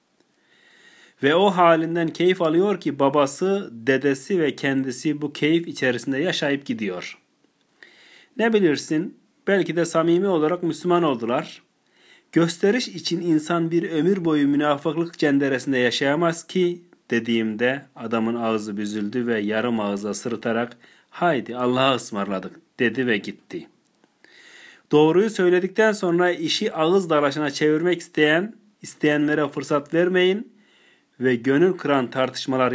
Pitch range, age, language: 120-165 Hz, 40-59, Turkish